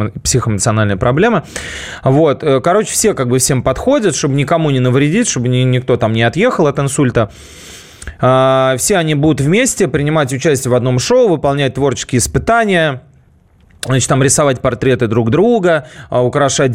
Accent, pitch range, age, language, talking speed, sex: native, 115-145 Hz, 20-39, Russian, 135 wpm, male